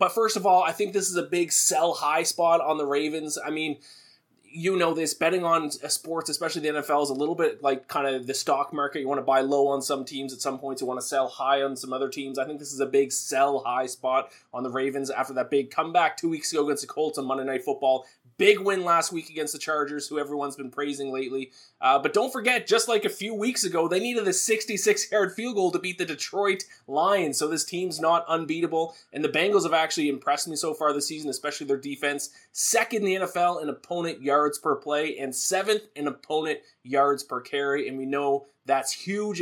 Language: English